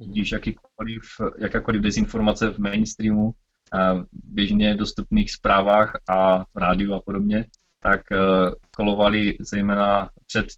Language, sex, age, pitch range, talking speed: Czech, male, 20-39, 100-110 Hz, 90 wpm